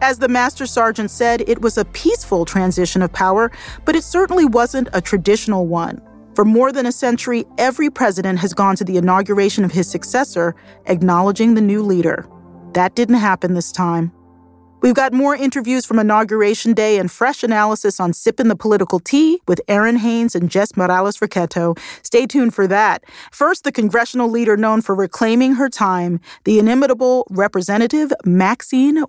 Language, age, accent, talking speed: English, 40-59, American, 165 wpm